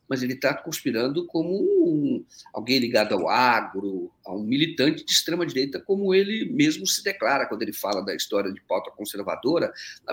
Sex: male